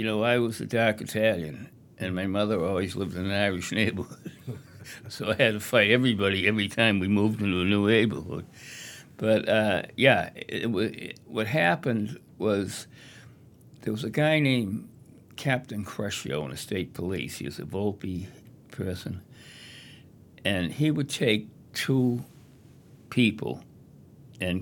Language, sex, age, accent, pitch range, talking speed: English, male, 60-79, American, 90-120 Hz, 150 wpm